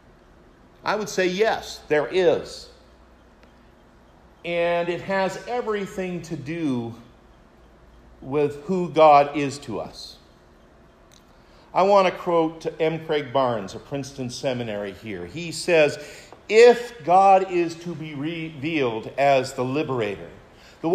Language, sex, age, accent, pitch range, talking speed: English, male, 50-69, American, 135-185 Hz, 115 wpm